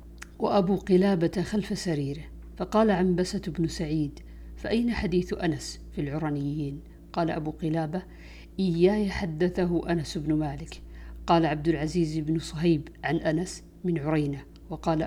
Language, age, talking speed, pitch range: Arabic, 50-69, 125 wpm, 150-180 Hz